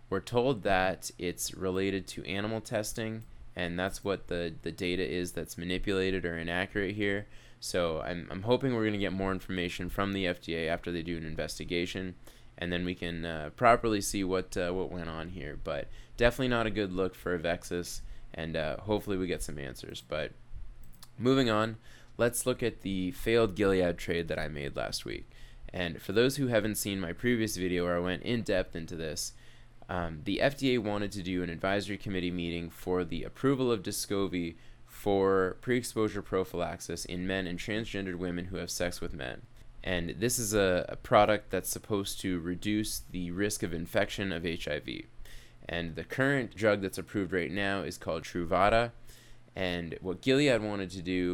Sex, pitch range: male, 90-105 Hz